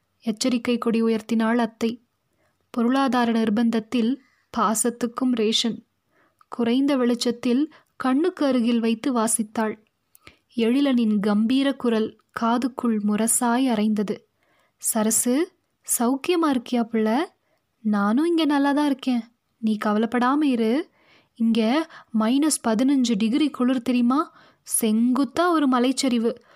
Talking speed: 85 wpm